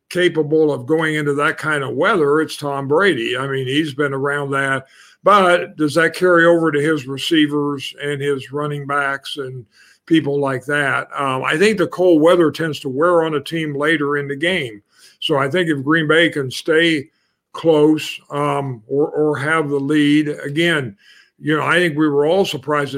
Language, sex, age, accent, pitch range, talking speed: English, male, 50-69, American, 145-165 Hz, 190 wpm